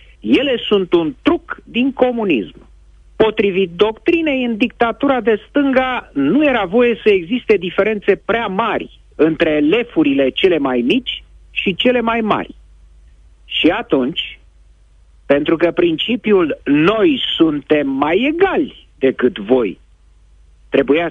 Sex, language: male, Romanian